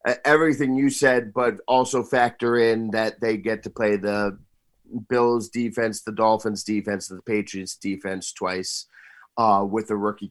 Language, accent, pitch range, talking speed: English, American, 105-140 Hz, 150 wpm